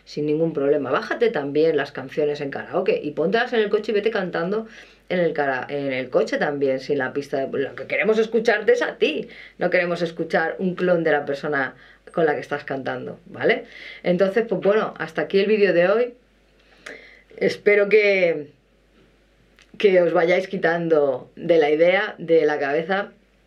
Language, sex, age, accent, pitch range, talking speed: Spanish, female, 20-39, Spanish, 155-215 Hz, 180 wpm